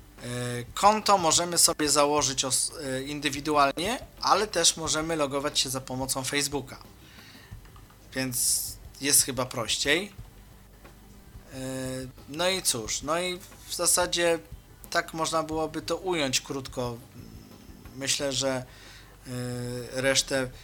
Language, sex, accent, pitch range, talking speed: Polish, male, native, 125-155 Hz, 95 wpm